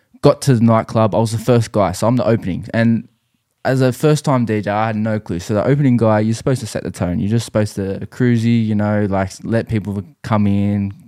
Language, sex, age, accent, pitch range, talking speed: English, male, 20-39, Australian, 95-115 Hz, 245 wpm